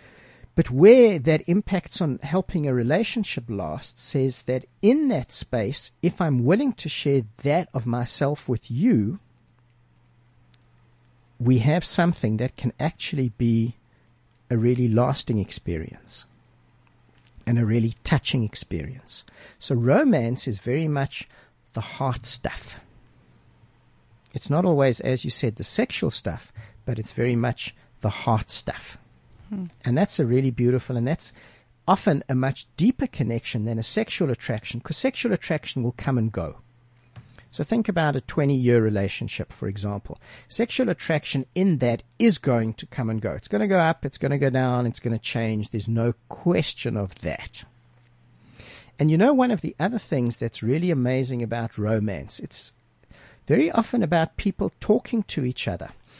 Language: English